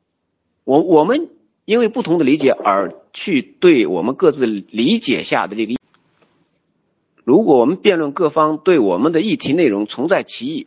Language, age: Chinese, 50-69